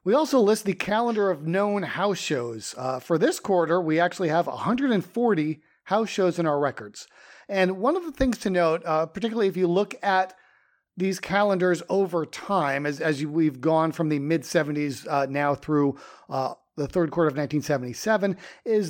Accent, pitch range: American, 150-195 Hz